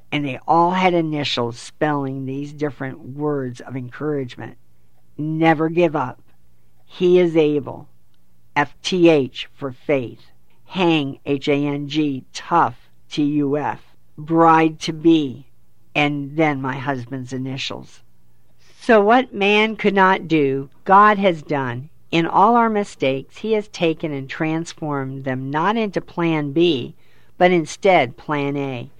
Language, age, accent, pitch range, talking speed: English, 50-69, American, 125-165 Hz, 120 wpm